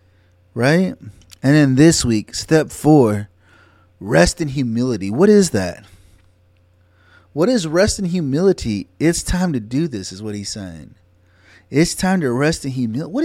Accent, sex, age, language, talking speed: American, male, 30-49, English, 155 wpm